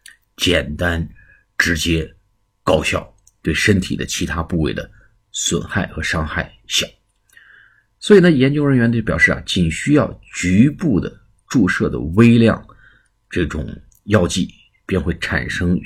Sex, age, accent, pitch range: male, 50-69, native, 85-110 Hz